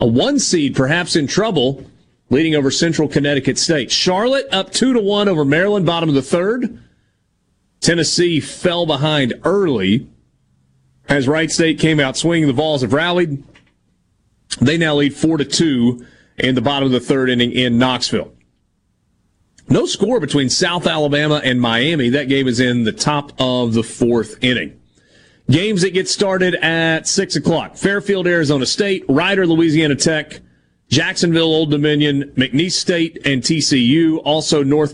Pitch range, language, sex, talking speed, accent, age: 130-170 Hz, English, male, 155 wpm, American, 40-59